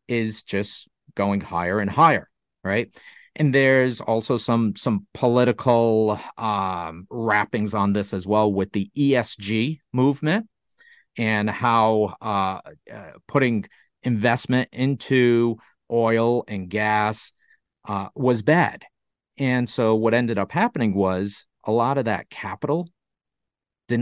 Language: English